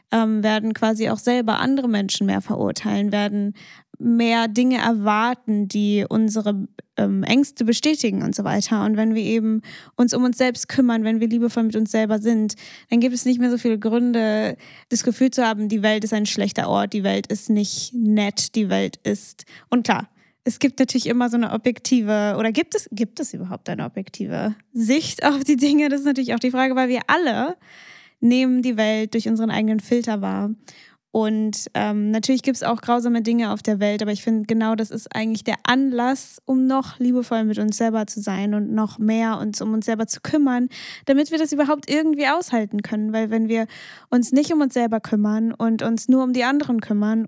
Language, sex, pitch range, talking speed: German, female, 215-245 Hz, 200 wpm